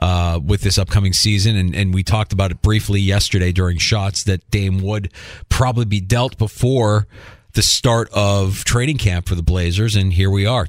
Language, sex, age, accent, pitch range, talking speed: English, male, 40-59, American, 95-120 Hz, 190 wpm